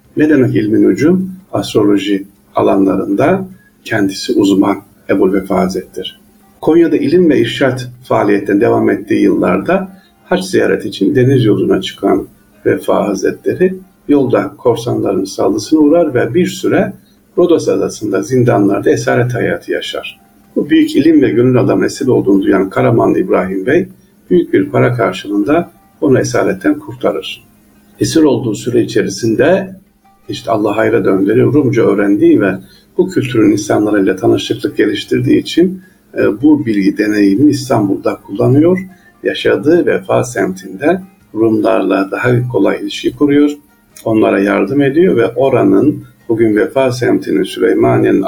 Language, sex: Turkish, male